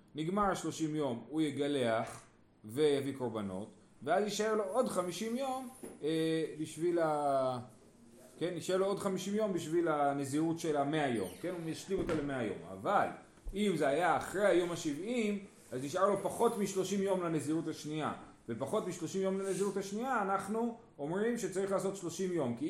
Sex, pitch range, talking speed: male, 145-205 Hz, 145 wpm